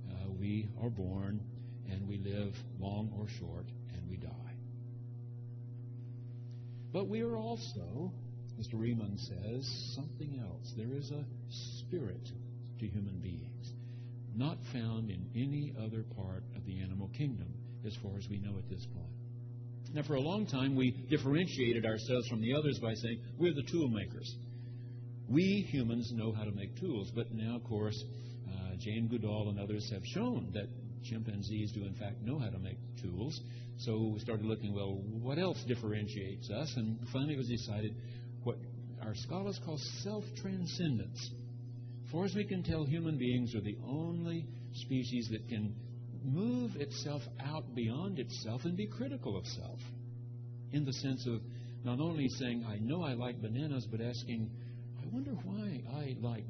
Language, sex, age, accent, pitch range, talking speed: English, male, 60-79, American, 110-125 Hz, 160 wpm